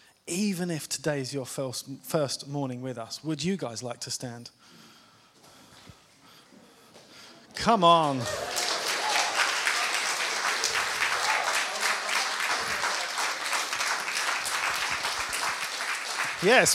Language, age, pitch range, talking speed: English, 20-39, 135-170 Hz, 65 wpm